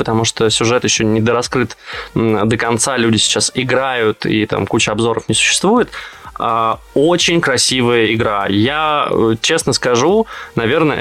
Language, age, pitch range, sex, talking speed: Russian, 20-39, 115-140 Hz, male, 130 wpm